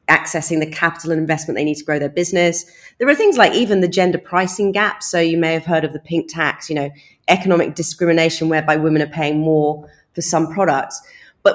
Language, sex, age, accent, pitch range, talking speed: English, female, 30-49, British, 155-195 Hz, 220 wpm